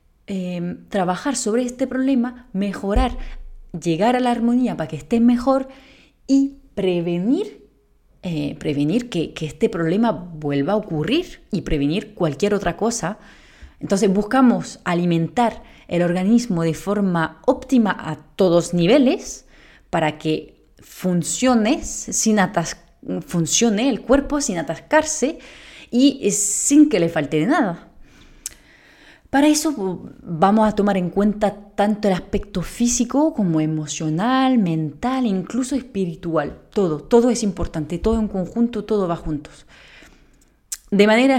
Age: 30-49